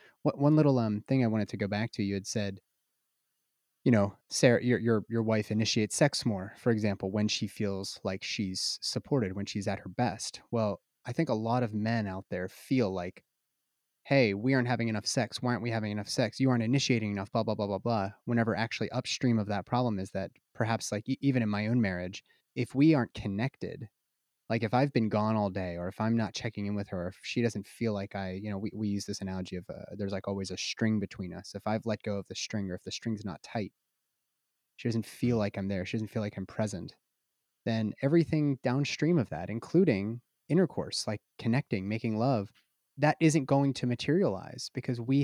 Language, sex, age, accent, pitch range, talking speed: English, male, 30-49, American, 100-125 Hz, 225 wpm